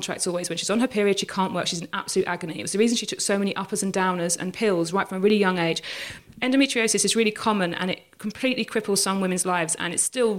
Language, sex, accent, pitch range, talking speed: English, female, British, 190-225 Hz, 265 wpm